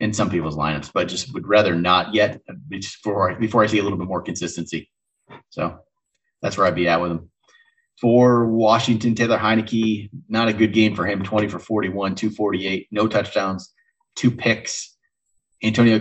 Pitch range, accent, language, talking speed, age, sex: 100-125 Hz, American, English, 170 wpm, 30-49, male